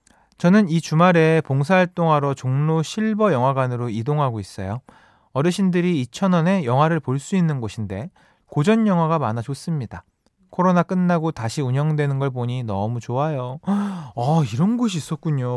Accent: native